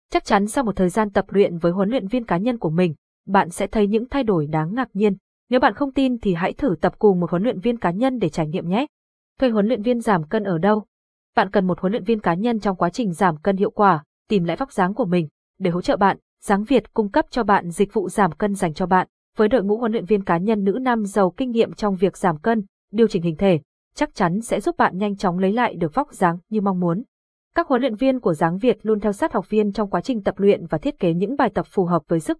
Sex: female